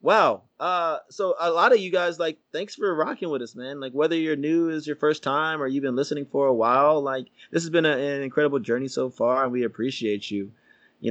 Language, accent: English, American